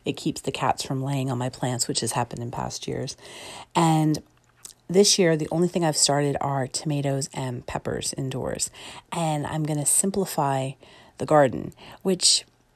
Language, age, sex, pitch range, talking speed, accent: English, 40-59, female, 140-170 Hz, 170 wpm, American